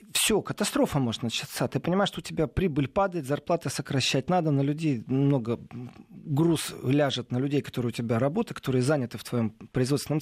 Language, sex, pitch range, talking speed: Russian, male, 135-180 Hz, 175 wpm